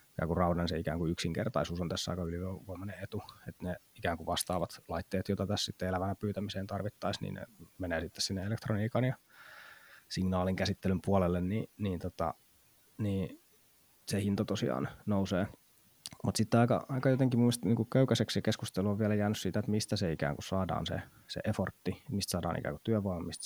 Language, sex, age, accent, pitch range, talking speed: Finnish, male, 20-39, native, 90-105 Hz, 175 wpm